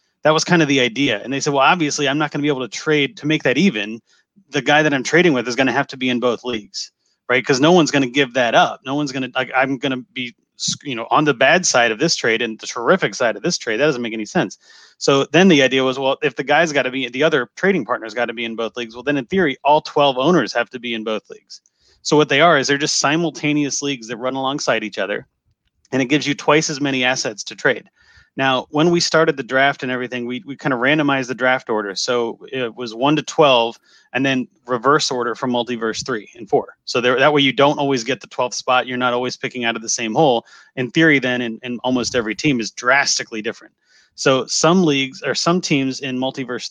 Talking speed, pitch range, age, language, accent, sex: 265 wpm, 125-145 Hz, 30-49, English, American, male